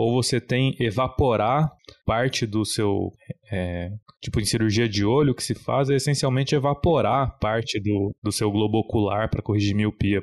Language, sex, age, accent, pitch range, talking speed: Portuguese, male, 20-39, Brazilian, 105-140 Hz, 170 wpm